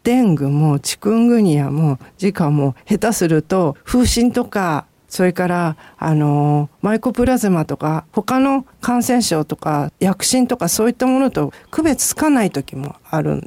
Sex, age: female, 50-69